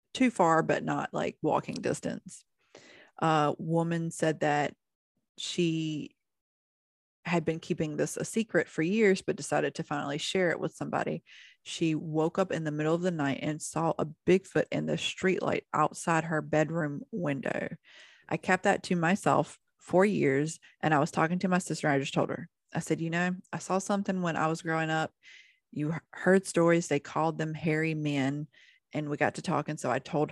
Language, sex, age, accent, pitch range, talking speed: English, female, 30-49, American, 150-180 Hz, 190 wpm